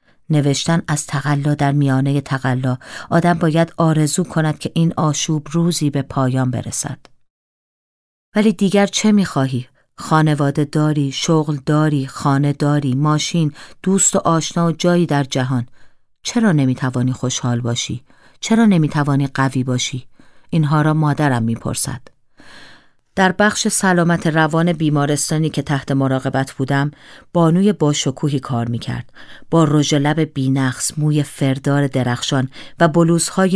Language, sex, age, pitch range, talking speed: Persian, female, 40-59, 135-165 Hz, 125 wpm